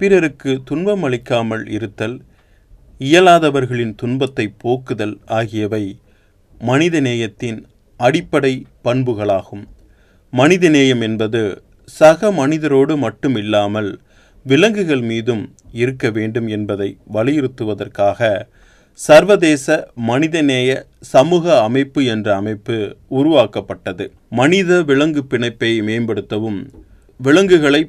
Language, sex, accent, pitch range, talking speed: Tamil, male, native, 110-150 Hz, 70 wpm